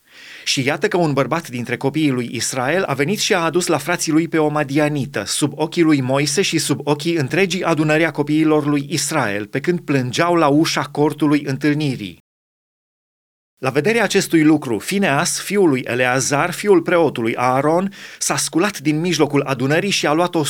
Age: 30-49